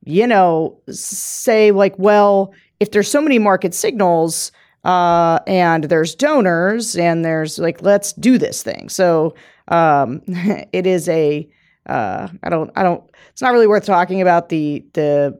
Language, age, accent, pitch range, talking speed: English, 40-59, American, 160-200 Hz, 155 wpm